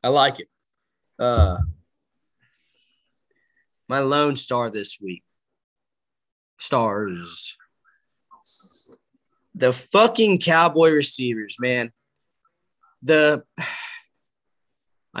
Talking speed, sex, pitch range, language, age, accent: 65 wpm, male, 125-170 Hz, English, 20-39, American